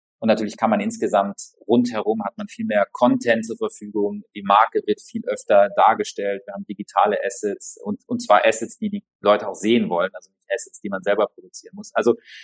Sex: male